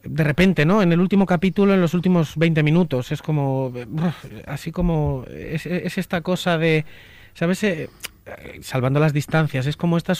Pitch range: 135-180 Hz